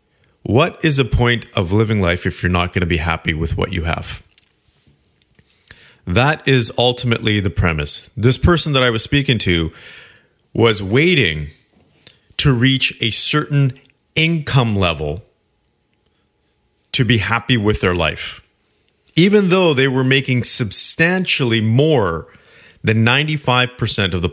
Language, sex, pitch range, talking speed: English, male, 95-130 Hz, 135 wpm